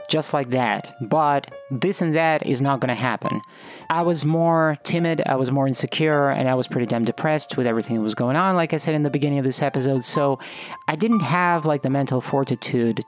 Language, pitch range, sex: English, 130-170 Hz, male